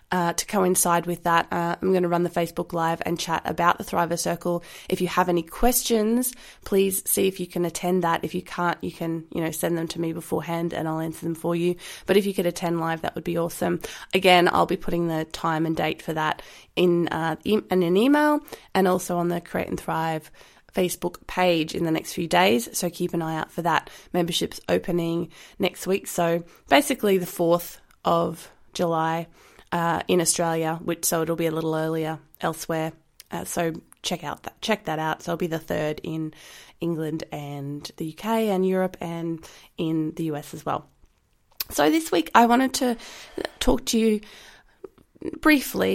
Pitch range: 165-190 Hz